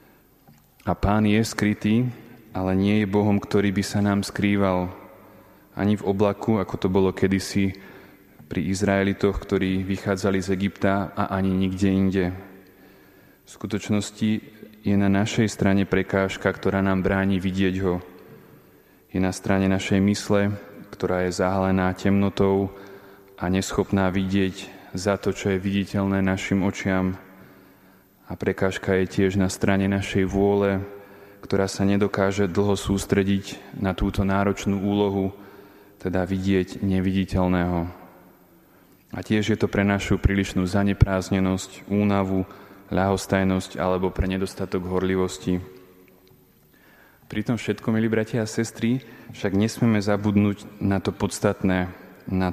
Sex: male